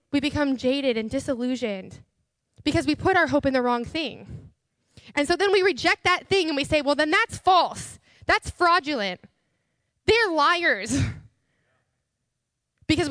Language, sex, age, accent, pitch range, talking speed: English, female, 10-29, American, 230-305 Hz, 150 wpm